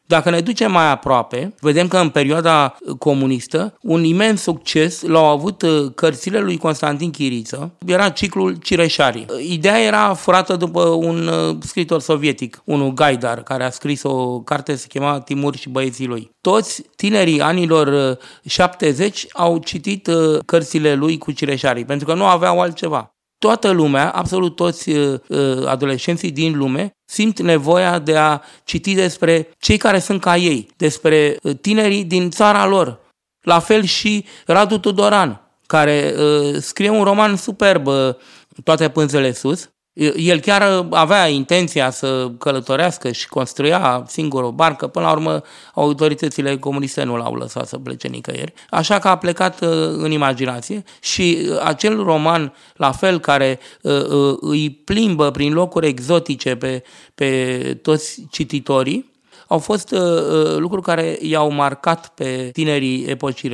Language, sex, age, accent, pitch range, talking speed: Romanian, male, 30-49, native, 140-180 Hz, 135 wpm